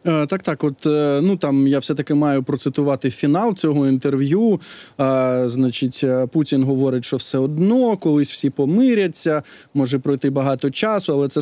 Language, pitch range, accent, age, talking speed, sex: Ukrainian, 140-185 Hz, native, 20-39, 150 wpm, male